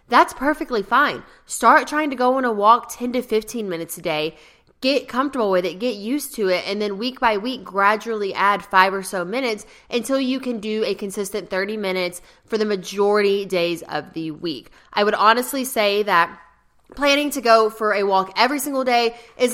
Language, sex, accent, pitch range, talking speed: English, female, American, 190-235 Hz, 200 wpm